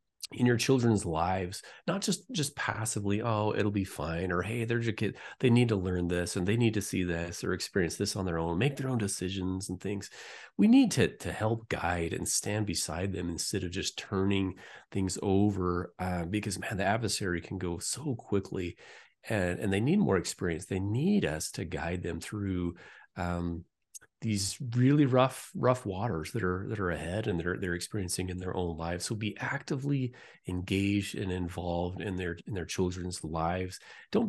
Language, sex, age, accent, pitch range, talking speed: English, male, 30-49, American, 90-115 Hz, 190 wpm